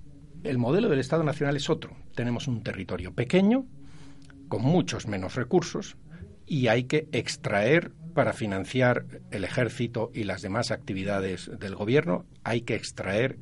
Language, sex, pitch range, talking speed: Spanish, male, 95-135 Hz, 145 wpm